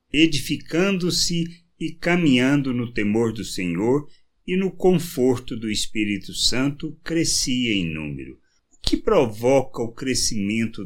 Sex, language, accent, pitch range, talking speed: male, Portuguese, Brazilian, 100-145 Hz, 115 wpm